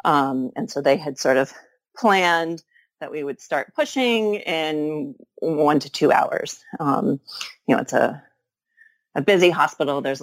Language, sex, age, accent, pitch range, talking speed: English, female, 30-49, American, 140-210 Hz, 160 wpm